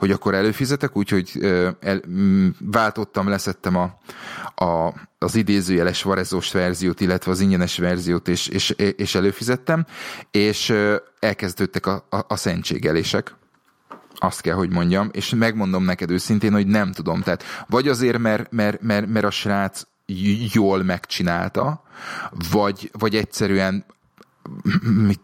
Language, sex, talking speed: Hungarian, male, 130 wpm